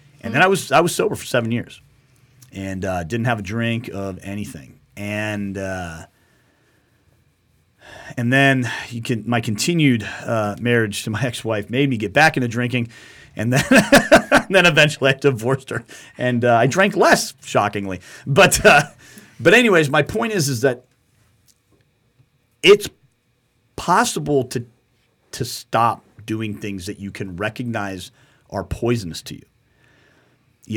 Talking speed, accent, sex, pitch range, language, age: 150 wpm, American, male, 100-135 Hz, English, 40-59